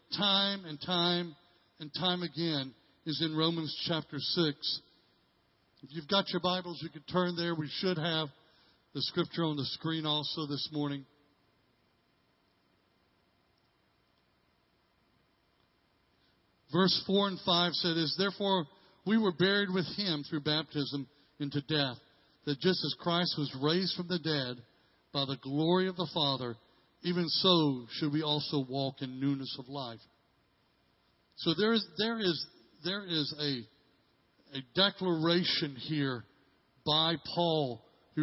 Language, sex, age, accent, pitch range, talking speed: English, male, 60-79, American, 145-175 Hz, 135 wpm